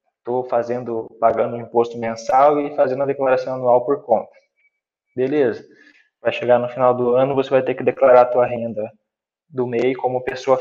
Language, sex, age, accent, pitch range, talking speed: Portuguese, male, 20-39, Brazilian, 120-140 Hz, 175 wpm